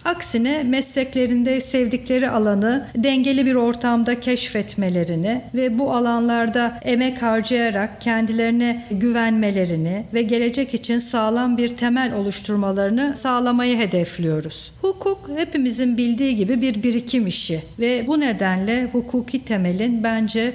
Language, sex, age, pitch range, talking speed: Turkish, female, 50-69, 200-255 Hz, 110 wpm